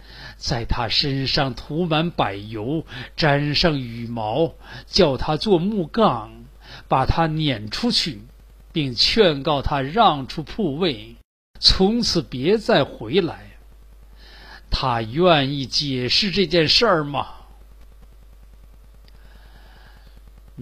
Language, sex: Chinese, male